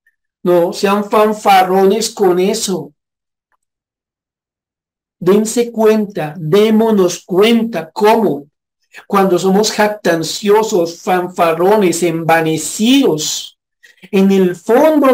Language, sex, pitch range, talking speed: Spanish, male, 160-200 Hz, 70 wpm